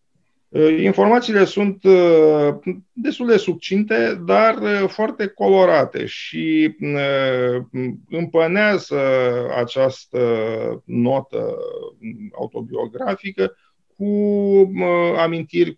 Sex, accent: male, Romanian